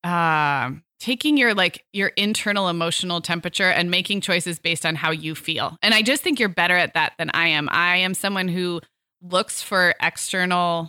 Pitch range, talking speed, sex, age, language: 170-210 Hz, 185 wpm, female, 20-39, English